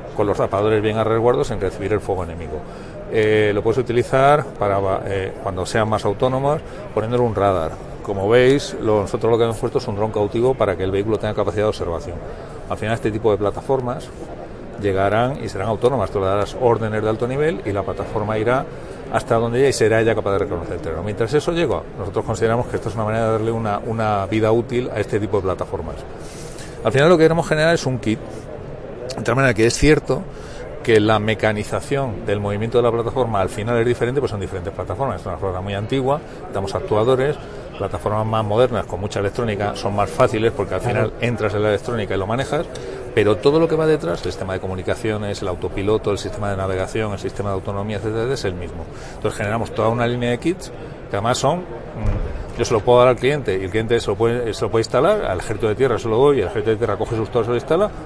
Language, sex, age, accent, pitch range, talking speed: Spanish, male, 40-59, Spanish, 100-125 Hz, 230 wpm